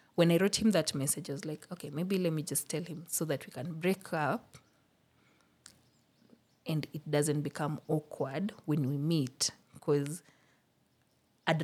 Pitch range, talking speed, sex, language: 145-175 Hz, 165 wpm, female, English